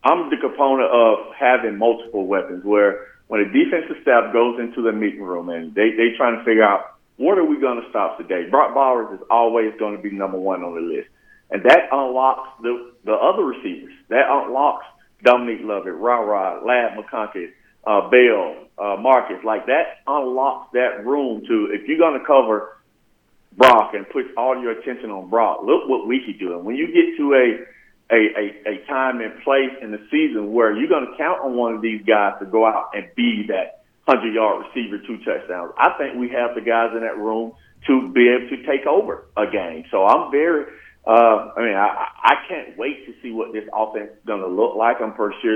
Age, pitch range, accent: 50-69, 110-135 Hz, American